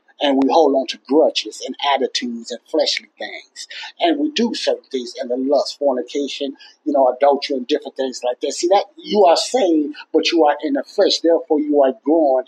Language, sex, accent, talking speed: English, male, American, 205 wpm